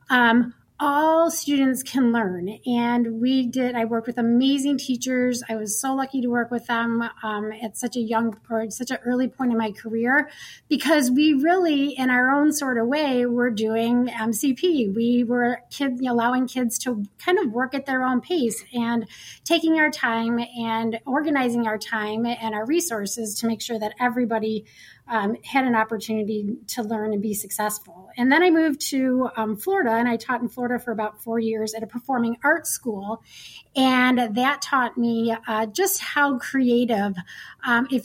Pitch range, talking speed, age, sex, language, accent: 225-265 Hz, 185 wpm, 30-49, female, English, American